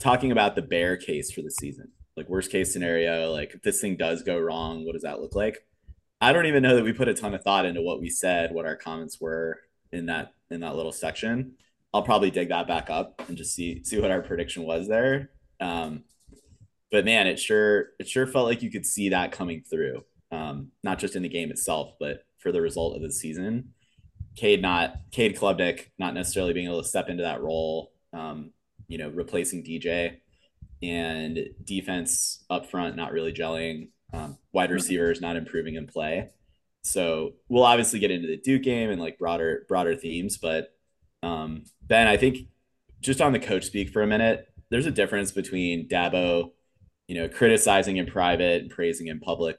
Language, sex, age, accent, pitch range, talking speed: English, male, 20-39, American, 85-110 Hz, 200 wpm